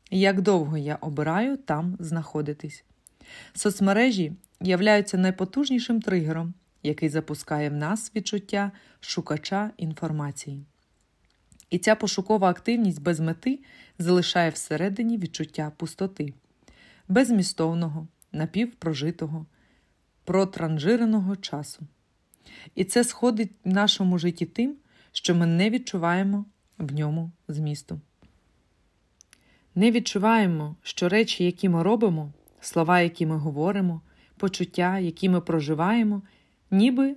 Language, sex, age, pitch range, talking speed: Ukrainian, female, 30-49, 155-210 Hz, 100 wpm